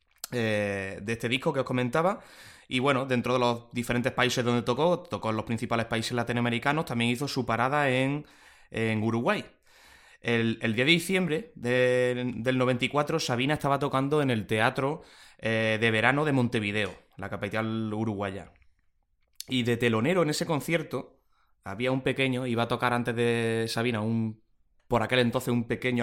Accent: Spanish